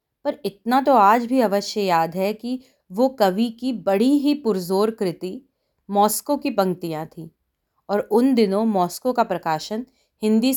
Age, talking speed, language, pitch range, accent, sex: 30-49, 155 wpm, Hindi, 180-240 Hz, native, female